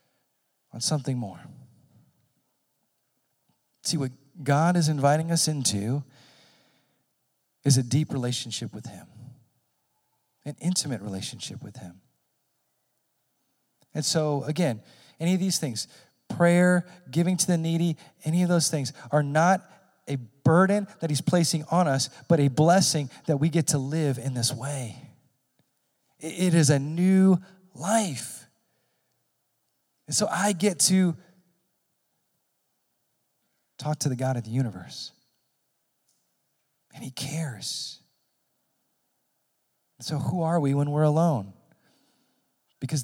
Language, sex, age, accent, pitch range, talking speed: English, male, 40-59, American, 130-170 Hz, 115 wpm